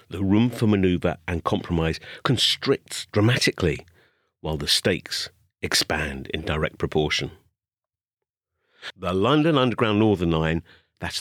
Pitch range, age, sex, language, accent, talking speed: 90-120 Hz, 50-69, male, English, British, 110 wpm